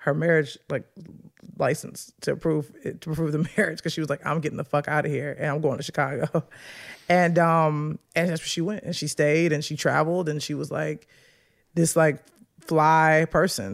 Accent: American